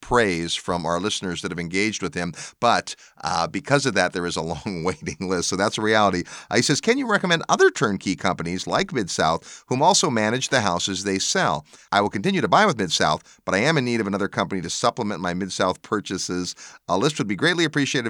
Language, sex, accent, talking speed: English, male, American, 235 wpm